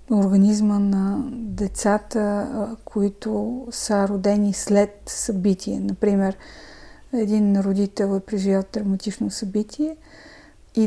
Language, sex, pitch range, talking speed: Bulgarian, female, 195-230 Hz, 90 wpm